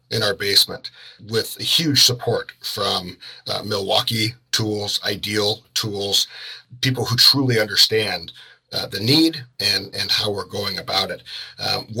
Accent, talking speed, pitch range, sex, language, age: American, 135 wpm, 105-125 Hz, male, English, 50-69